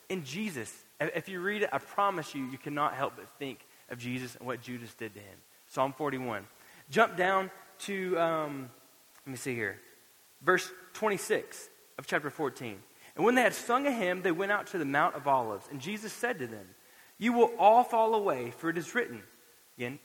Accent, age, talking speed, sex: American, 20-39, 200 wpm, male